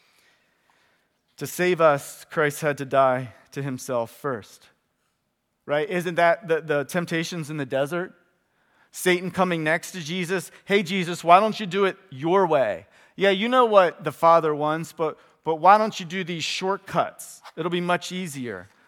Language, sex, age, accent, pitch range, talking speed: English, male, 30-49, American, 120-160 Hz, 165 wpm